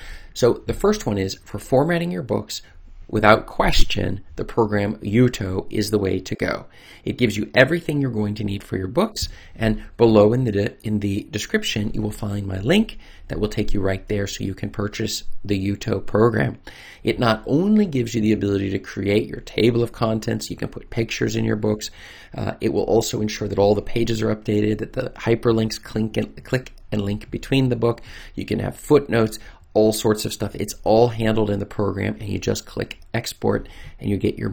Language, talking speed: English, 205 wpm